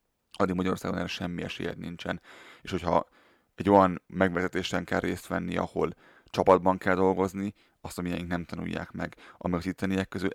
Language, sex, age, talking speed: Hungarian, male, 30-49, 150 wpm